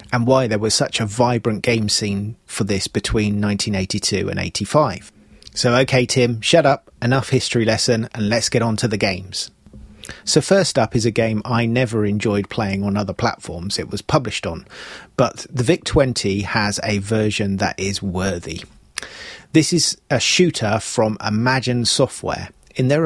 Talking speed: 170 wpm